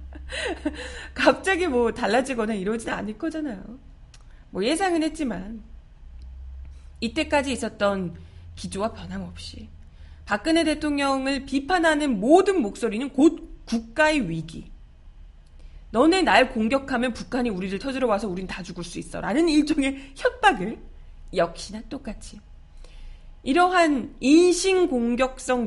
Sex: female